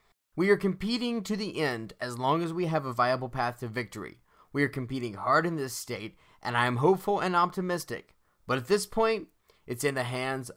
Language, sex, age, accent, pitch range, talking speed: English, male, 20-39, American, 130-190 Hz, 210 wpm